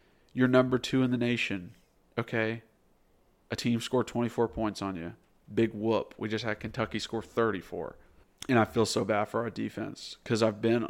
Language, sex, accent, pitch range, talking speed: English, male, American, 100-115 Hz, 180 wpm